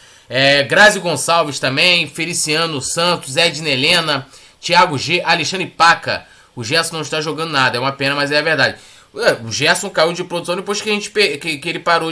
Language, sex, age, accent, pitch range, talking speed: Portuguese, male, 20-39, Brazilian, 140-195 Hz, 190 wpm